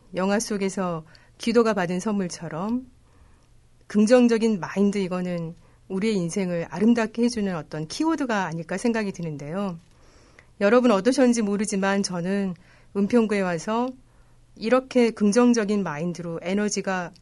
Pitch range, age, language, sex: 170-225 Hz, 40-59, Korean, female